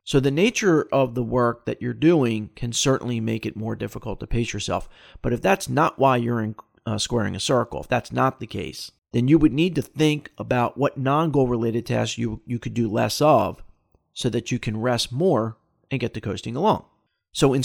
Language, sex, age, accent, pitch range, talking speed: English, male, 40-59, American, 110-140 Hz, 220 wpm